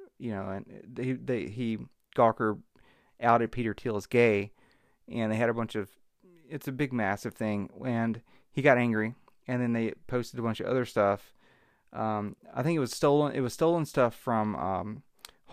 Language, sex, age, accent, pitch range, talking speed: English, male, 30-49, American, 110-130 Hz, 185 wpm